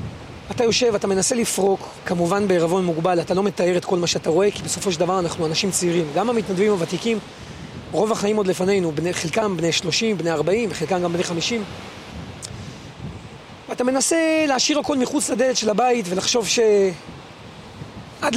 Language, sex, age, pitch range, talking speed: Hebrew, male, 40-59, 180-220 Hz, 160 wpm